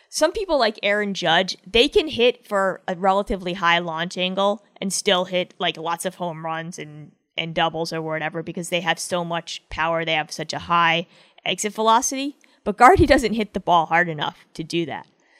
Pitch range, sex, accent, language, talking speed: 170-210 Hz, female, American, English, 200 wpm